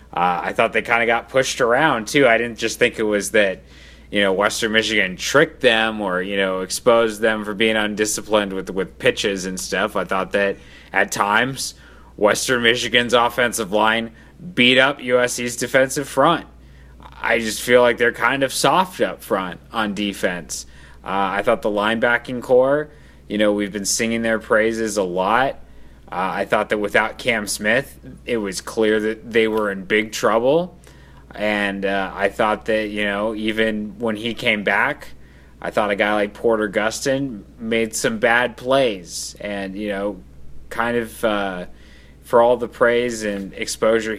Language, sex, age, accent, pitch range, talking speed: English, male, 30-49, American, 95-115 Hz, 175 wpm